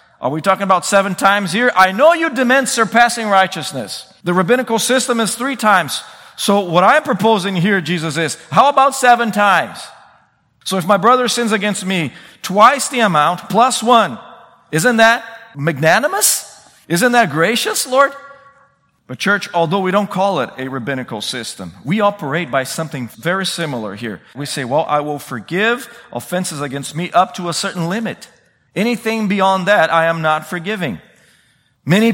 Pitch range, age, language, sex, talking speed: 160-220 Hz, 40-59, English, male, 165 wpm